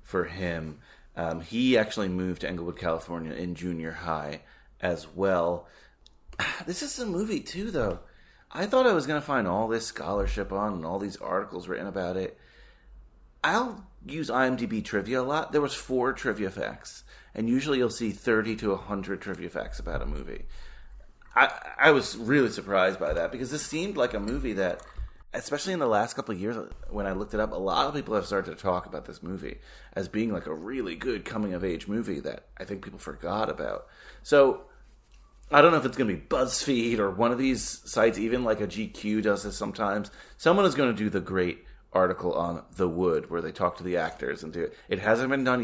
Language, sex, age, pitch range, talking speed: English, male, 30-49, 90-130 Hz, 210 wpm